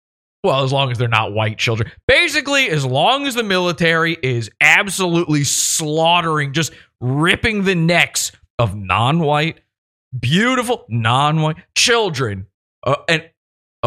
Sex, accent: male, American